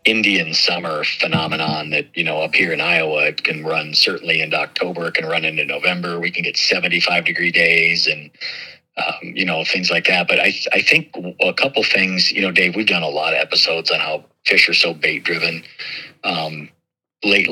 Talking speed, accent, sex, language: 200 wpm, American, male, English